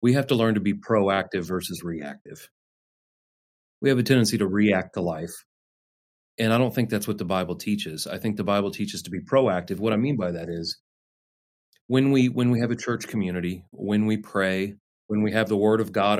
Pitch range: 90-110 Hz